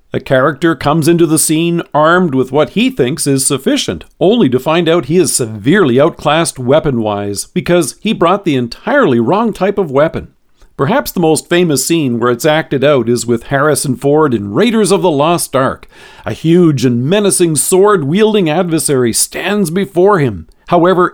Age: 50-69